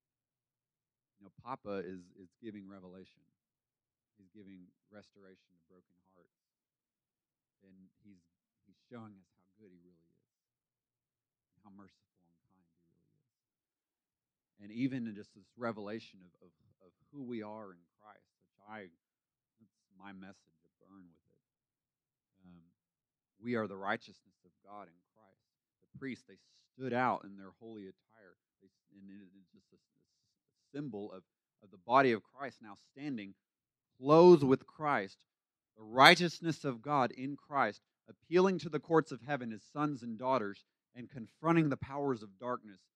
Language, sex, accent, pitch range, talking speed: English, male, American, 95-135 Hz, 155 wpm